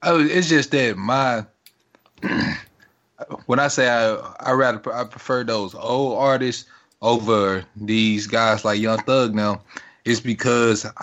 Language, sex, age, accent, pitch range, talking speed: English, male, 20-39, American, 105-125 Hz, 135 wpm